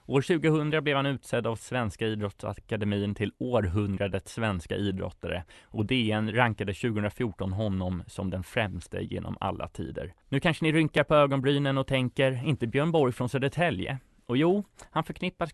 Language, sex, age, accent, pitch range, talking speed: Swedish, male, 20-39, native, 100-130 Hz, 155 wpm